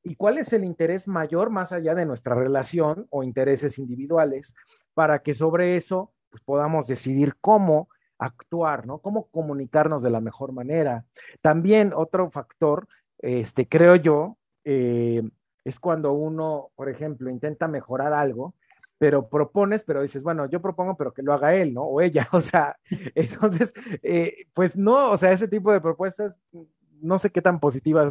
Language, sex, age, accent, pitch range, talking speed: Spanish, male, 50-69, Mexican, 135-180 Hz, 160 wpm